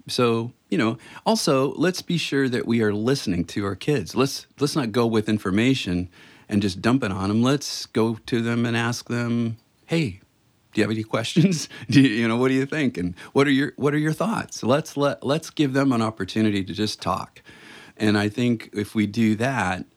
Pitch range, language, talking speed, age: 105-135 Hz, English, 215 wpm, 40-59